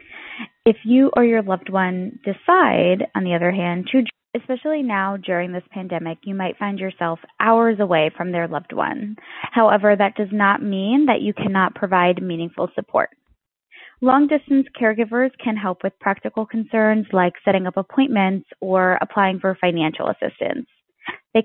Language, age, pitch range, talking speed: English, 20-39, 185-235 Hz, 155 wpm